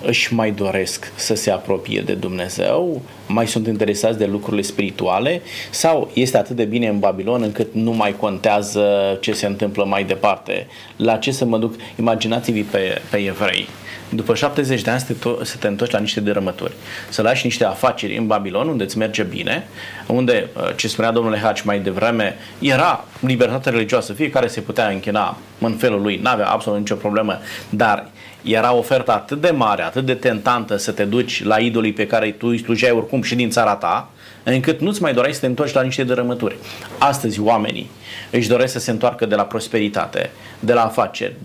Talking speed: 190 wpm